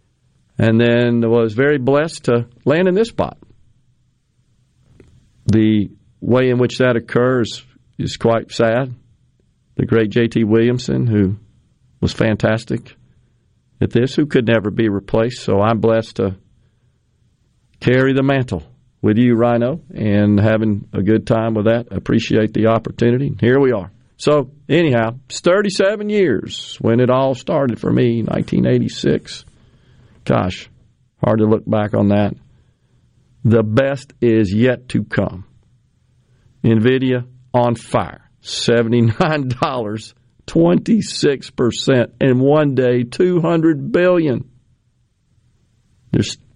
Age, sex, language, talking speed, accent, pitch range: 50-69, male, English, 120 wpm, American, 115-130 Hz